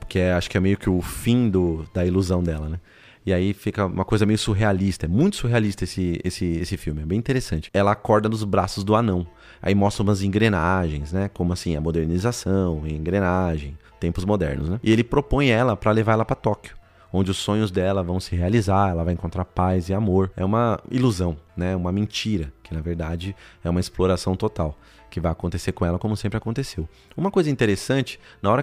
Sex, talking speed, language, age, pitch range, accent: male, 205 wpm, Portuguese, 30-49, 90-125 Hz, Brazilian